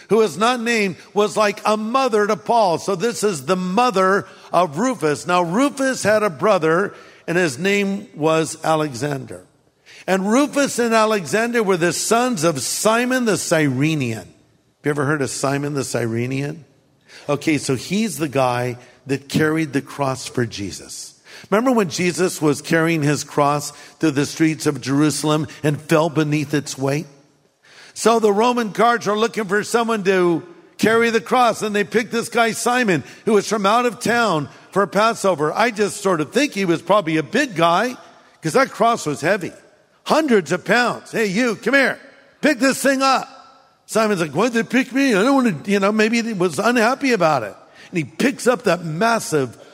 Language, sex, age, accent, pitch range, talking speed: English, male, 50-69, American, 150-230 Hz, 180 wpm